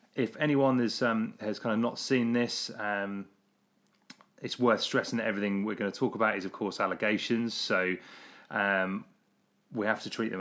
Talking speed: 185 wpm